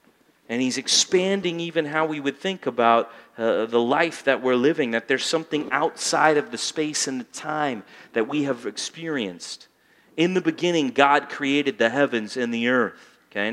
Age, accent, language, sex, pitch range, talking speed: 40-59, American, English, male, 140-185 Hz, 175 wpm